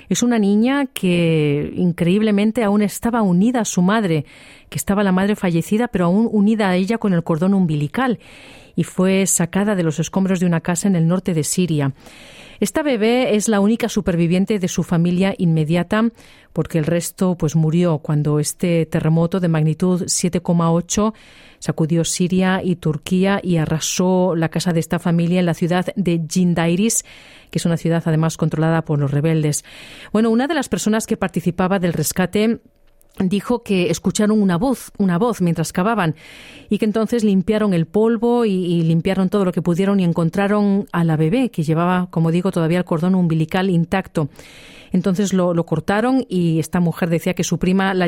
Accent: Spanish